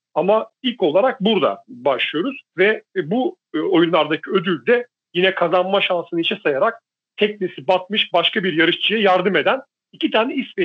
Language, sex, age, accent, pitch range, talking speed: Turkish, male, 40-59, native, 170-240 Hz, 135 wpm